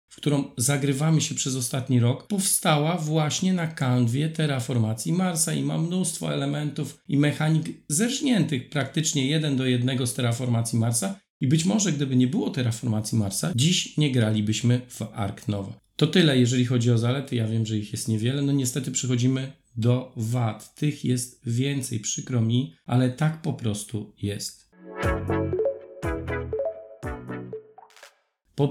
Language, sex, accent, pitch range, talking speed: Polish, male, native, 120-160 Hz, 145 wpm